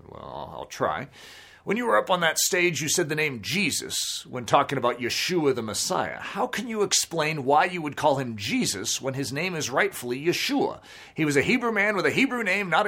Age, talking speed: 40-59, 215 wpm